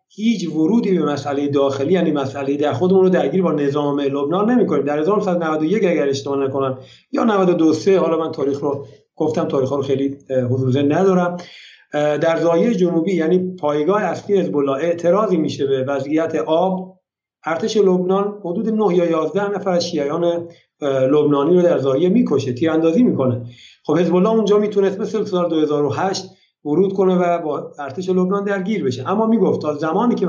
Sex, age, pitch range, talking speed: male, 50-69, 140-185 Hz, 160 wpm